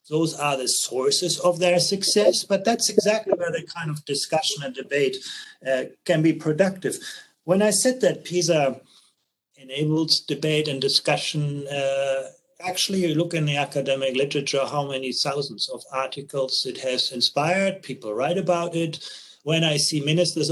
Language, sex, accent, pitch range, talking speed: English, male, German, 140-170 Hz, 160 wpm